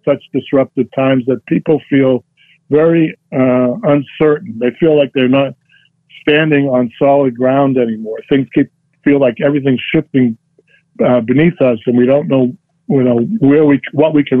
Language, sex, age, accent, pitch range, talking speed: English, male, 50-69, American, 130-155 Hz, 165 wpm